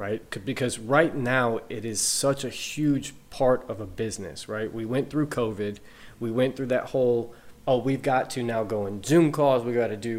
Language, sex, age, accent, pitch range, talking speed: English, male, 20-39, American, 110-135 Hz, 210 wpm